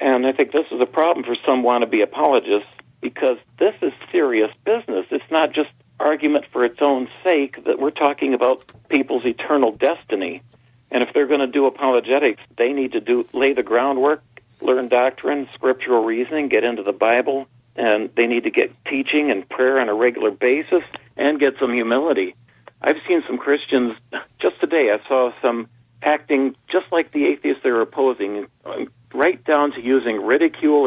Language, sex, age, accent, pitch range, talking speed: English, male, 40-59, American, 120-145 Hz, 175 wpm